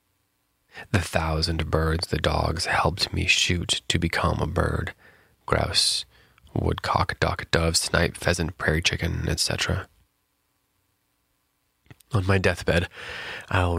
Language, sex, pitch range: English, male, 80-90 Hz